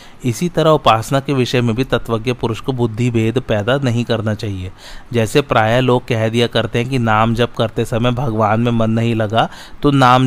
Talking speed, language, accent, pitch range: 205 wpm, Hindi, native, 115-130 Hz